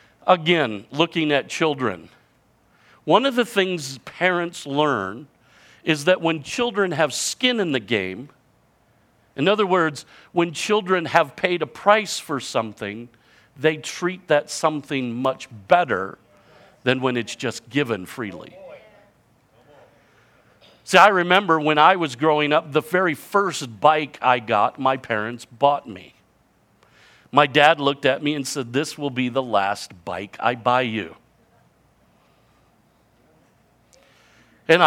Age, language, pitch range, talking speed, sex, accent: 50-69, English, 115-160 Hz, 135 wpm, male, American